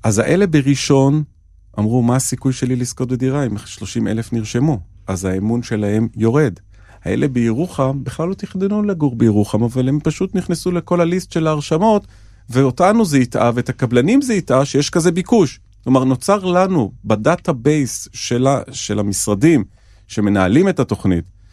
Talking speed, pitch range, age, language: 145 wpm, 100-130 Hz, 40-59, Hebrew